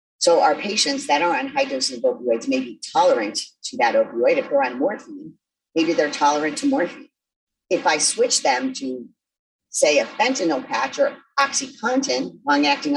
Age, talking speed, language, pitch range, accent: 40-59, 175 wpm, English, 190-280 Hz, American